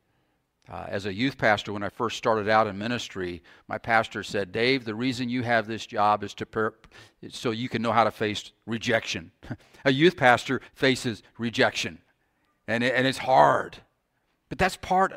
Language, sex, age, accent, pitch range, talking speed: English, male, 50-69, American, 105-150 Hz, 180 wpm